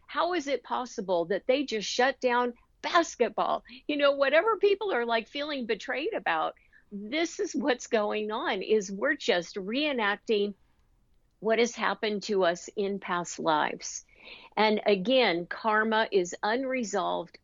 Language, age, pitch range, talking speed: English, 50-69, 200-255 Hz, 140 wpm